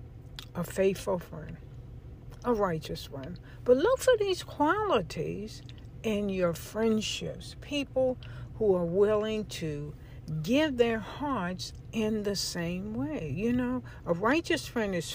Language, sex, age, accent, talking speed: English, female, 60-79, American, 125 wpm